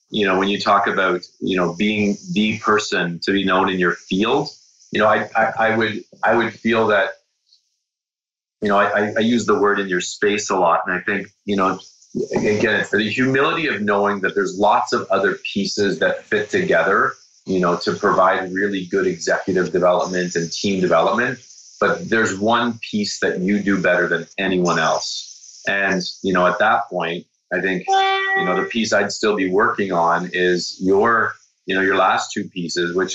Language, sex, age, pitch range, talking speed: English, male, 30-49, 95-110 Hz, 195 wpm